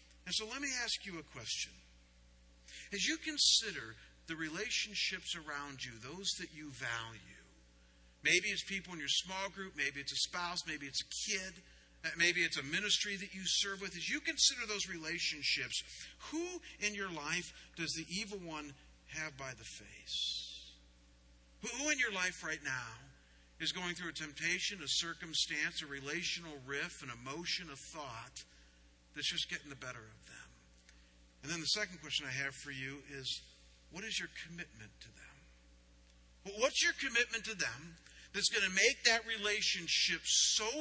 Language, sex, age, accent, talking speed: English, male, 50-69, American, 165 wpm